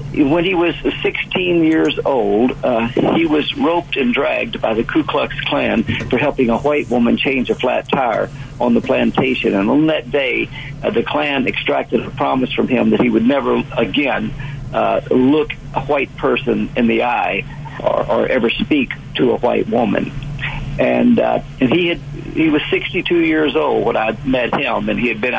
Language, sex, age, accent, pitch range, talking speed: English, male, 50-69, American, 120-150 Hz, 190 wpm